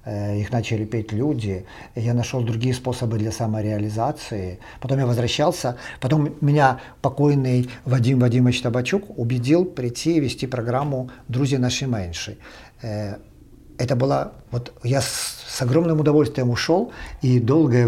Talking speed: 125 wpm